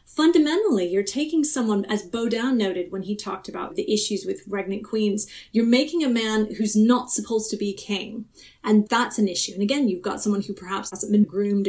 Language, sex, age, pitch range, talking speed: English, female, 30-49, 200-230 Hz, 205 wpm